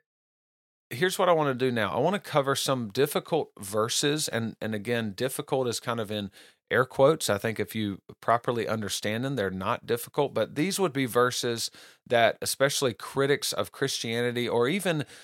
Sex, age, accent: male, 40-59, American